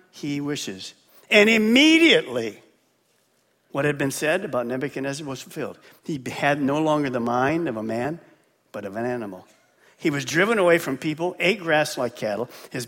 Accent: American